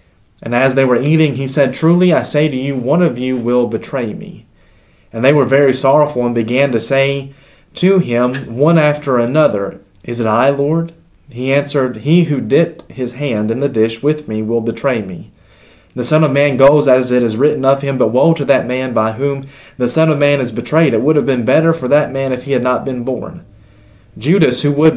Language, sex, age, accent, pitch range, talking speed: English, male, 20-39, American, 110-140 Hz, 220 wpm